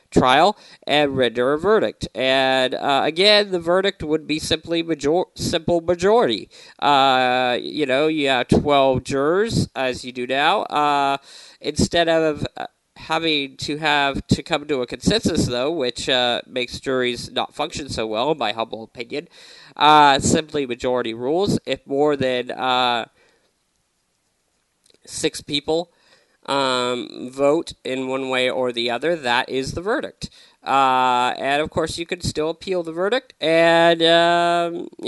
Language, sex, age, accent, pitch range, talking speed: English, male, 40-59, American, 125-160 Hz, 145 wpm